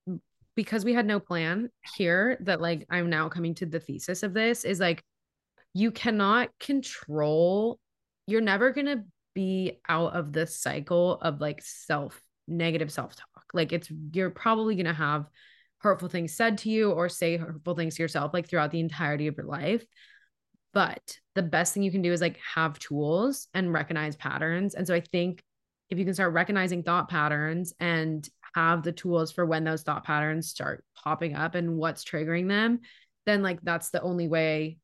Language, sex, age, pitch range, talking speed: English, female, 20-39, 155-190 Hz, 185 wpm